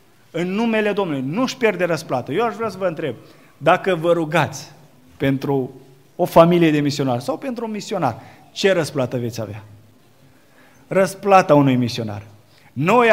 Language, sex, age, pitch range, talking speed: Romanian, male, 30-49, 130-180 Hz, 145 wpm